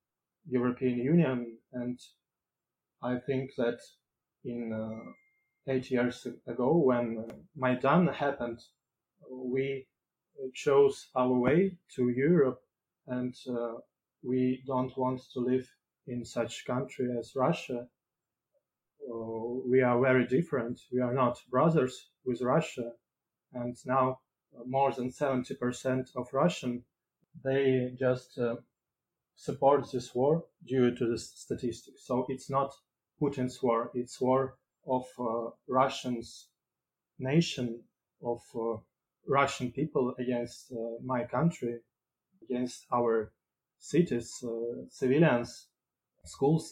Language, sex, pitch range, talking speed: English, male, 120-135 Hz, 110 wpm